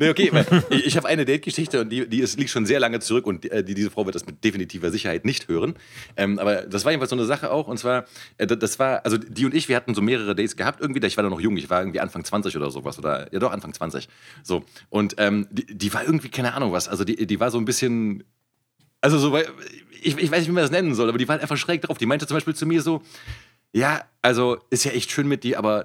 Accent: German